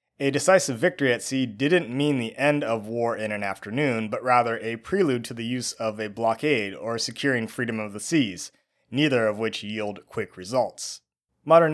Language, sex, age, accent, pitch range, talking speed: English, male, 30-49, American, 110-140 Hz, 190 wpm